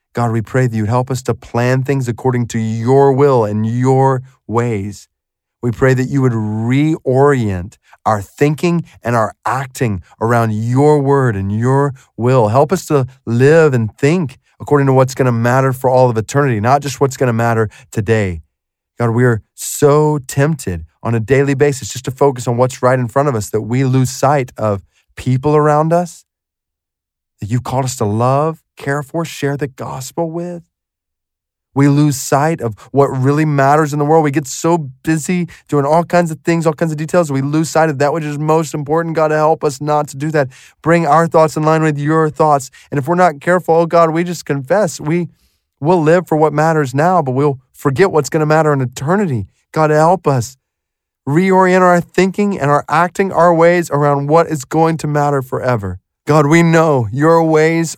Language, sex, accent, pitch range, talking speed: English, male, American, 120-155 Hz, 200 wpm